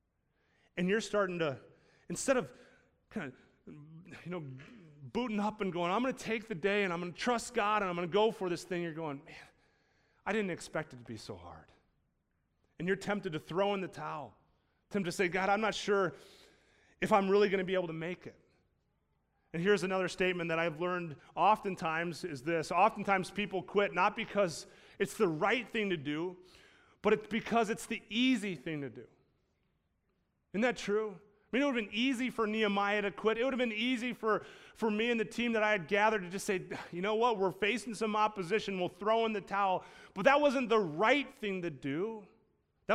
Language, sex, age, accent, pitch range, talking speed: English, male, 30-49, American, 180-225 Hz, 215 wpm